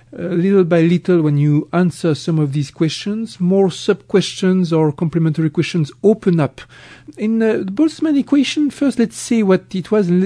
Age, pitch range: 40-59, 135-190 Hz